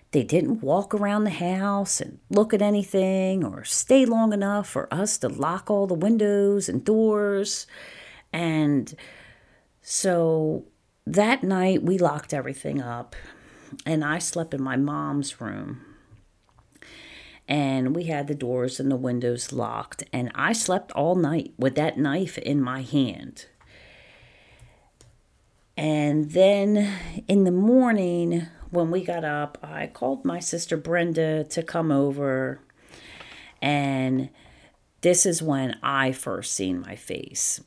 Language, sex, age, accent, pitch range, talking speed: English, female, 40-59, American, 130-175 Hz, 135 wpm